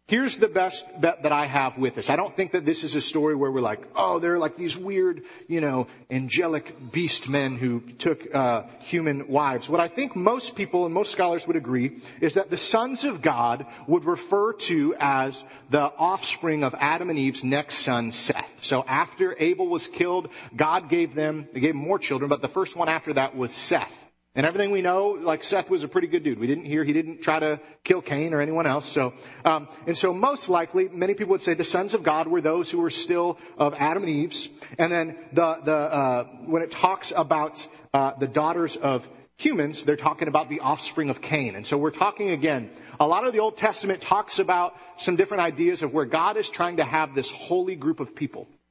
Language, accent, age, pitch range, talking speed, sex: English, American, 40-59, 145-190 Hz, 220 wpm, male